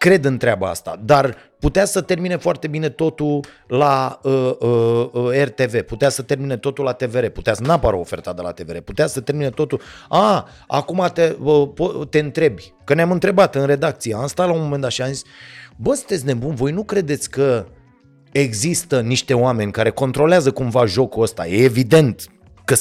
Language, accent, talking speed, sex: Romanian, native, 185 wpm, male